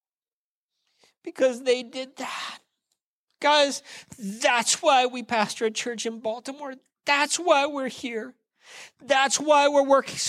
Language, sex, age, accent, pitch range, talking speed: English, male, 50-69, American, 225-265 Hz, 120 wpm